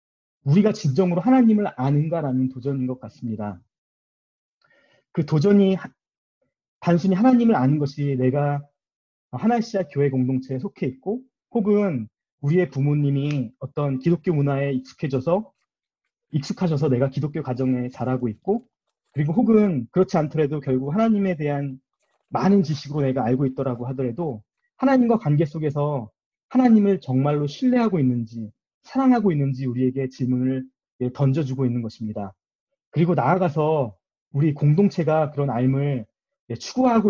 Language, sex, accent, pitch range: Korean, male, native, 135-195 Hz